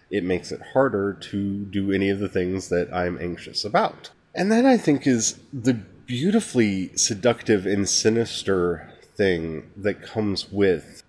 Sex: male